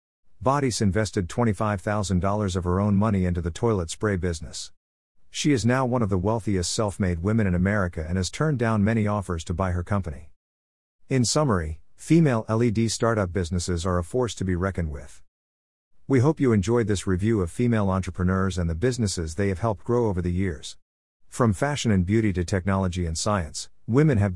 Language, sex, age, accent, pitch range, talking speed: English, male, 50-69, American, 90-115 Hz, 185 wpm